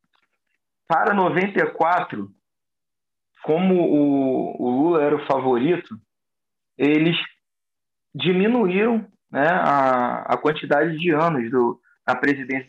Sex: male